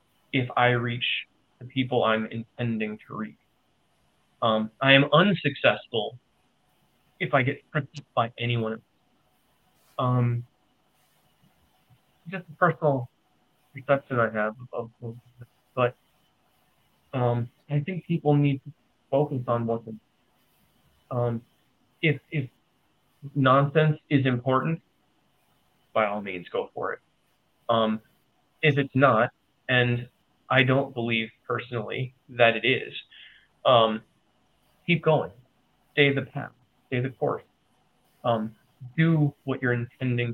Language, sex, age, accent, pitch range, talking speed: English, male, 30-49, American, 120-145 Hz, 110 wpm